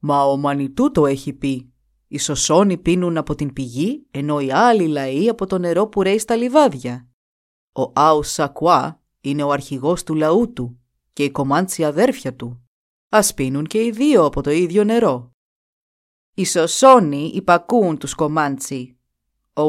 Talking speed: 160 wpm